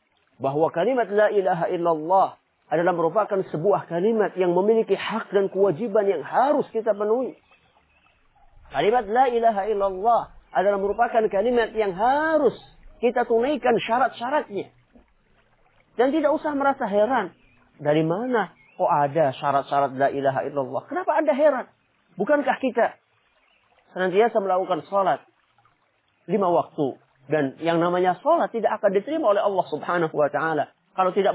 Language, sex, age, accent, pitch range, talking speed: English, male, 40-59, Indonesian, 170-250 Hz, 130 wpm